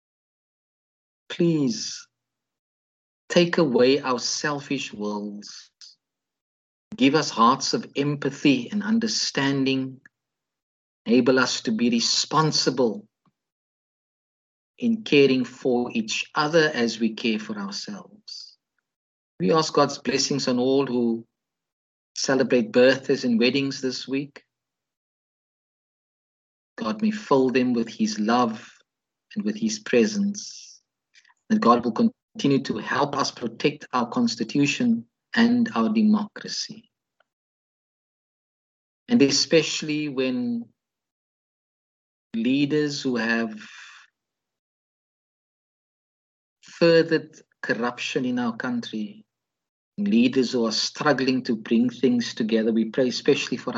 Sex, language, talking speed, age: male, English, 100 wpm, 50-69